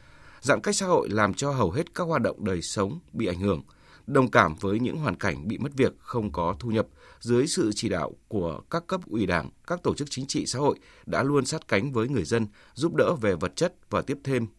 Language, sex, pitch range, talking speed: Vietnamese, male, 100-130 Hz, 245 wpm